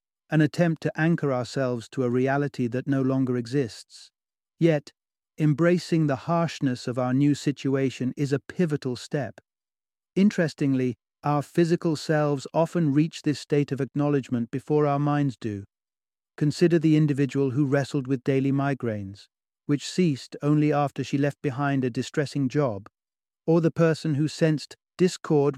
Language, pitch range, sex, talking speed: English, 125-145 Hz, male, 145 wpm